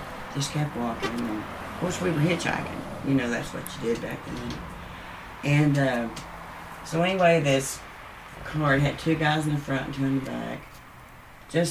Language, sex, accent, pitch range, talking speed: English, female, American, 120-150 Hz, 180 wpm